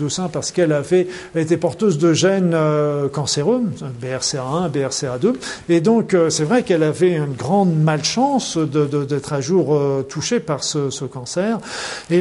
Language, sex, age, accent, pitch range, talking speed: French, male, 50-69, French, 150-185 Hz, 140 wpm